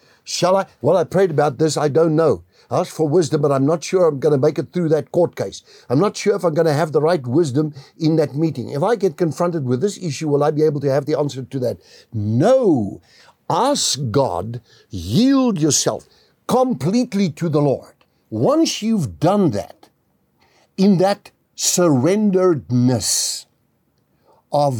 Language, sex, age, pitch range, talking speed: English, male, 60-79, 125-175 Hz, 180 wpm